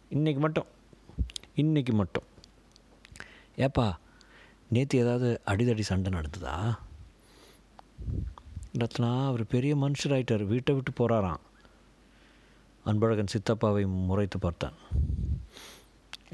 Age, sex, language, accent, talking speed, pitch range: 50-69, male, Tamil, native, 75 wpm, 95-125 Hz